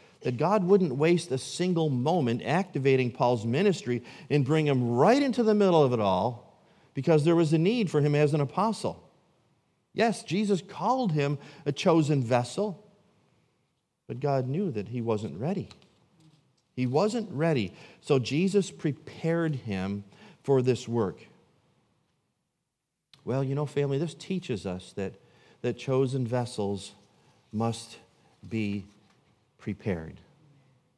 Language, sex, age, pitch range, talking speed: English, male, 40-59, 115-160 Hz, 130 wpm